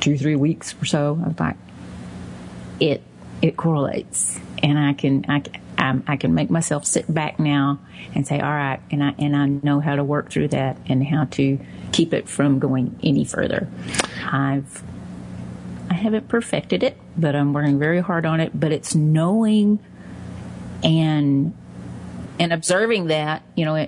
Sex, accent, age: female, American, 40-59